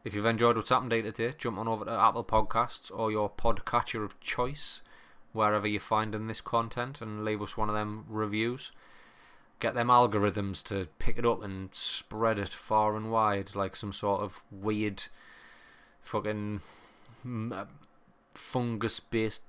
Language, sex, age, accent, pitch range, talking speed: English, male, 20-39, British, 105-115 Hz, 160 wpm